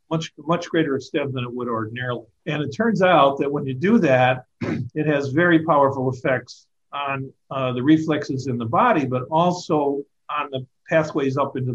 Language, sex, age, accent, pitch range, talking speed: English, male, 50-69, American, 125-155 Hz, 185 wpm